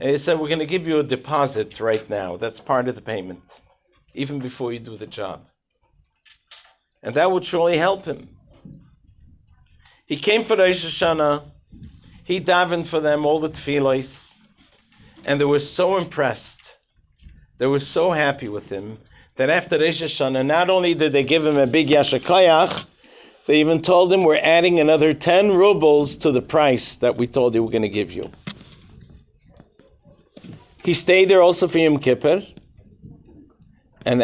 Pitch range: 125-170 Hz